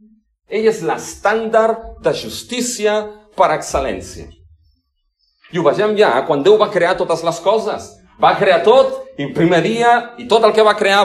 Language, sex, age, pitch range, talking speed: English, male, 40-59, 155-225 Hz, 170 wpm